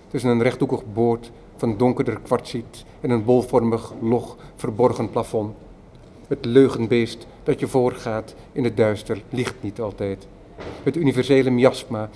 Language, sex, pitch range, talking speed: Dutch, male, 110-125 Hz, 135 wpm